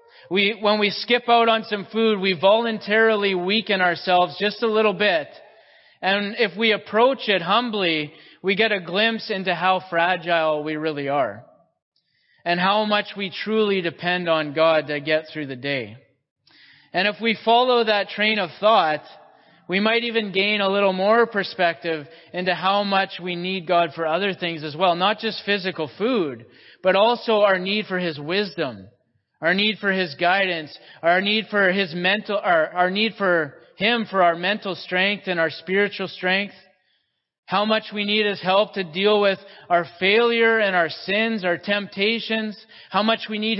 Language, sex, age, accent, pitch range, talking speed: English, male, 30-49, American, 175-215 Hz, 175 wpm